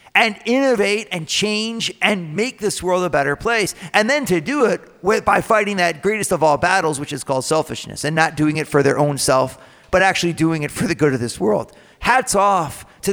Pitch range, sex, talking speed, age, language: 155-205 Hz, male, 220 wpm, 40-59, English